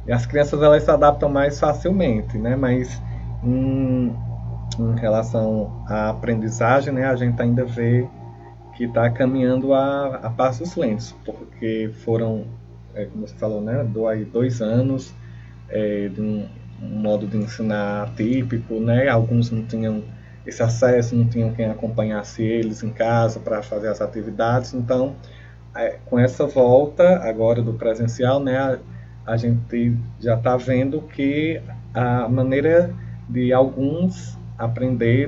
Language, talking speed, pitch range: Portuguese, 140 wpm, 110-125 Hz